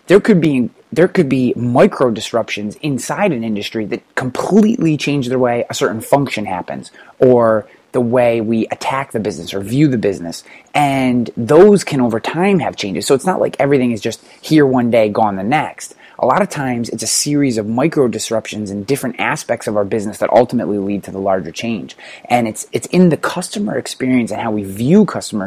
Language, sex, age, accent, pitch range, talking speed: English, male, 20-39, American, 105-140 Hz, 205 wpm